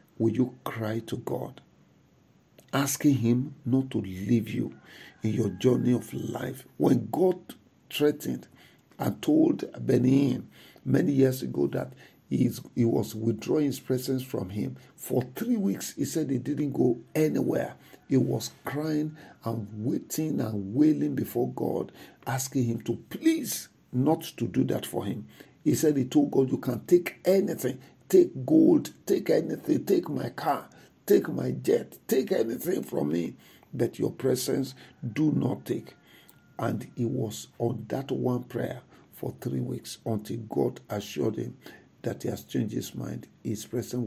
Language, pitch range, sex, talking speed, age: English, 115-150 Hz, male, 155 wpm, 50-69